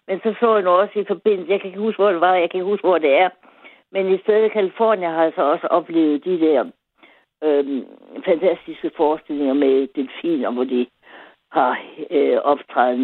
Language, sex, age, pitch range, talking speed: Danish, female, 60-79, 150-215 Hz, 205 wpm